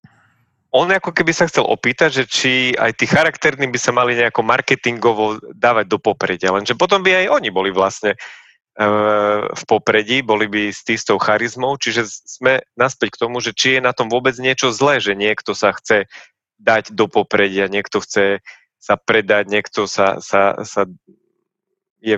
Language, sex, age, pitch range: Slovak, male, 30-49, 105-125 Hz